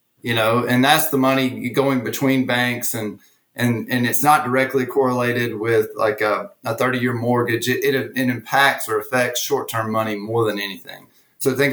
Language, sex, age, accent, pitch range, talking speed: English, male, 30-49, American, 115-135 Hz, 190 wpm